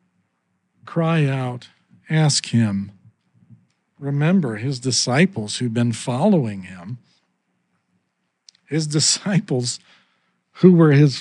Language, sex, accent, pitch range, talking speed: English, male, American, 140-185 Hz, 85 wpm